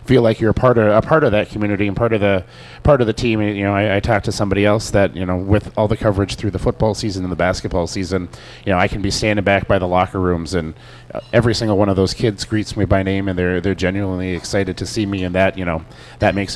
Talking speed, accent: 285 wpm, American